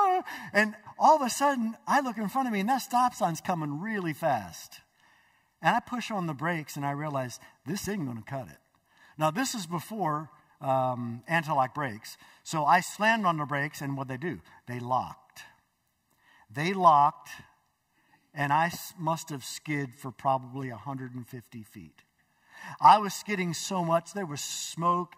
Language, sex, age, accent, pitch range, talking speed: English, male, 50-69, American, 140-210 Hz, 170 wpm